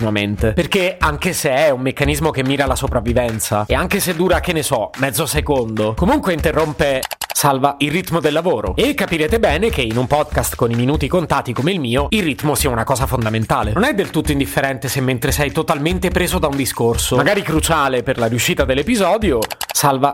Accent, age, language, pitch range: native, 30-49, Italian, 120-175 Hz